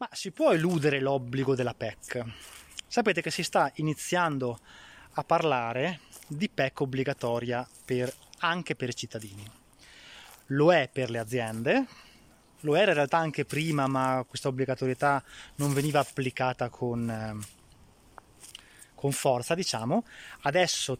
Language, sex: Italian, male